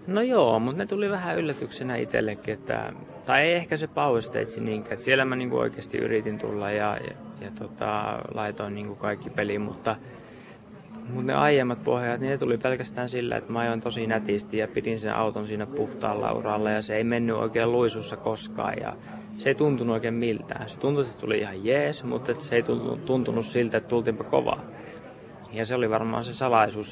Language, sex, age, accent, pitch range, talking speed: Finnish, male, 20-39, native, 105-120 Hz, 185 wpm